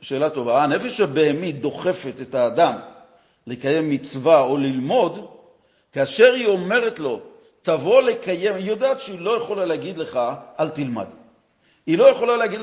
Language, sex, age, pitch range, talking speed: Hebrew, male, 50-69, 170-230 Hz, 145 wpm